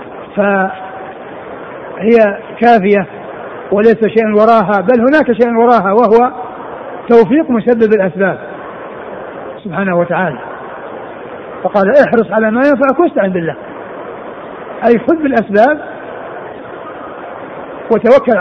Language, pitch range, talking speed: Arabic, 210-265 Hz, 85 wpm